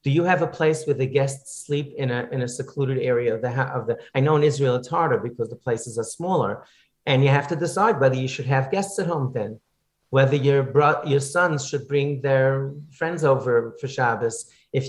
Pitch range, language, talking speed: 130-155 Hz, English, 225 wpm